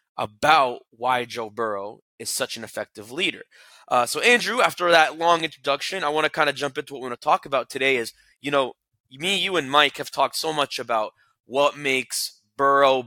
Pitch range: 130-160 Hz